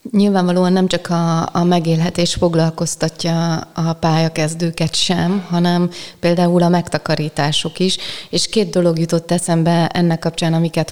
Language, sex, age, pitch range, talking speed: Hungarian, female, 30-49, 150-170 Hz, 125 wpm